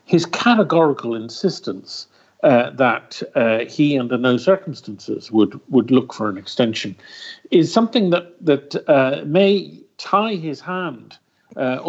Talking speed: 130 wpm